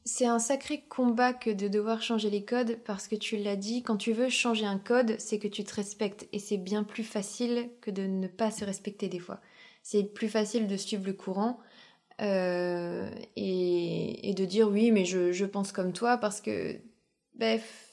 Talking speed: 205 wpm